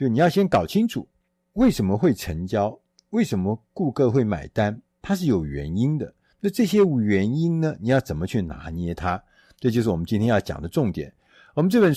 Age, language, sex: 50-69, Chinese, male